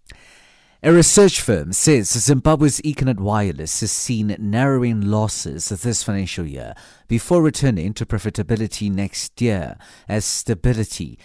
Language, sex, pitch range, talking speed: English, male, 100-130 Hz, 115 wpm